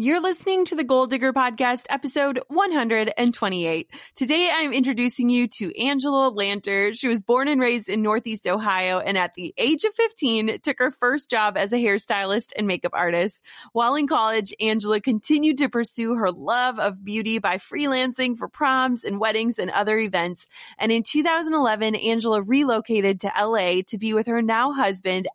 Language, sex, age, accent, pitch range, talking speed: English, female, 20-39, American, 205-270 Hz, 175 wpm